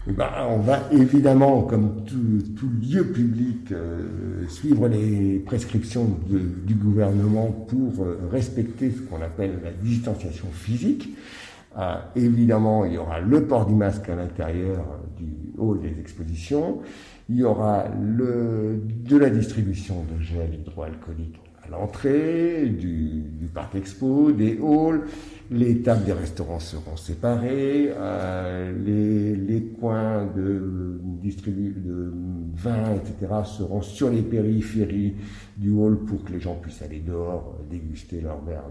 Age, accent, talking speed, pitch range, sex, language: 60-79, French, 135 wpm, 90-115 Hz, male, French